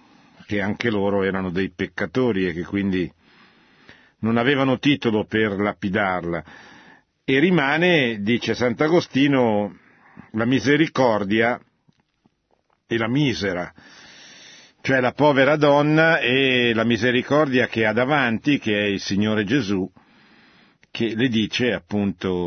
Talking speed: 110 wpm